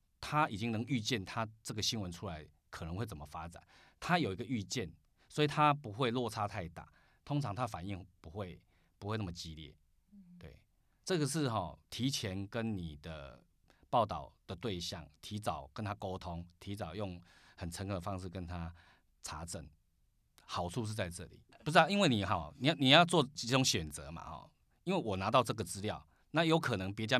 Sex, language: male, Chinese